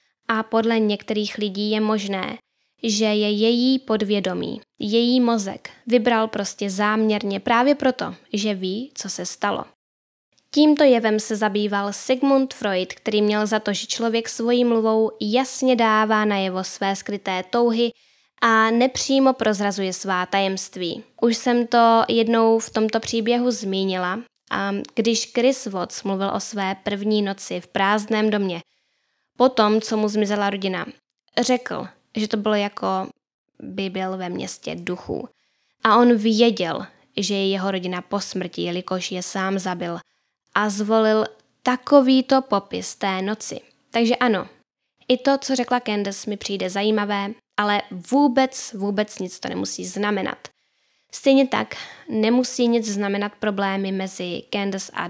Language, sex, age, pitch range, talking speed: Czech, female, 10-29, 195-235 Hz, 140 wpm